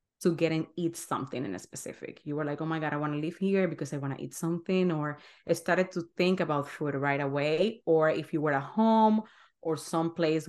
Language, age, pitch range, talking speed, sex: English, 30-49, 155-200 Hz, 240 wpm, female